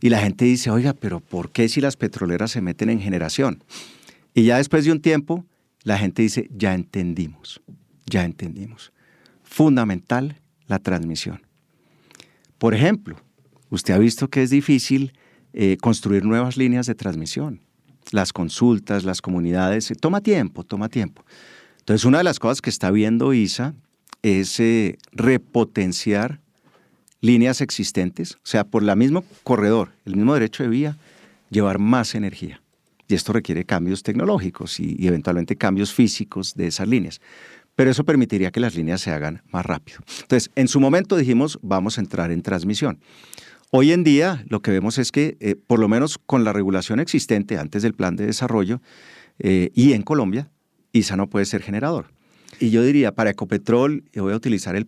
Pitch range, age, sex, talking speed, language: 95-130 Hz, 50-69, male, 170 wpm, English